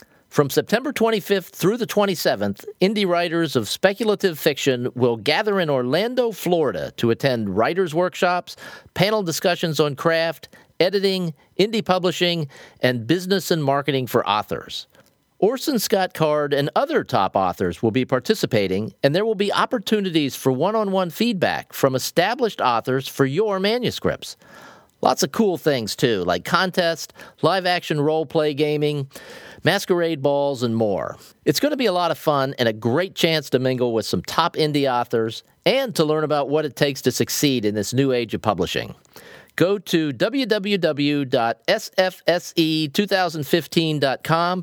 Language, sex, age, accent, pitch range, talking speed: English, male, 40-59, American, 135-190 Hz, 145 wpm